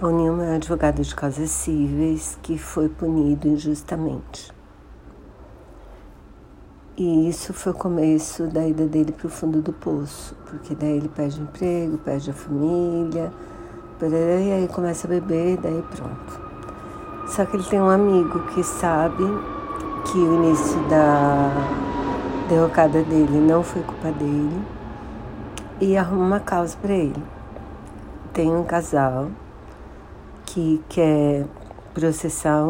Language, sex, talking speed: Portuguese, female, 130 wpm